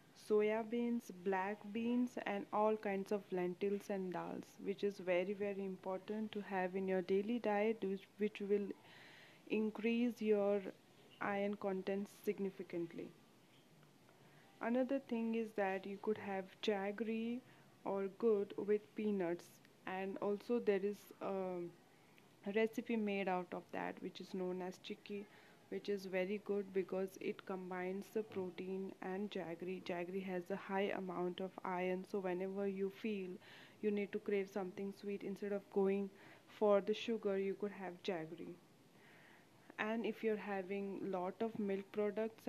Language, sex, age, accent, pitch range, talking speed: English, female, 20-39, Indian, 190-210 Hz, 145 wpm